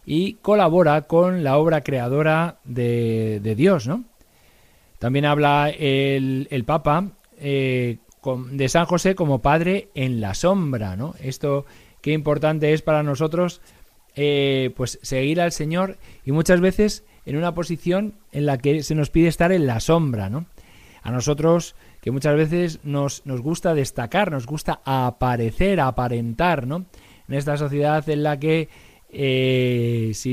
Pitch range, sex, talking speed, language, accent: 130-170 Hz, male, 150 wpm, Spanish, Spanish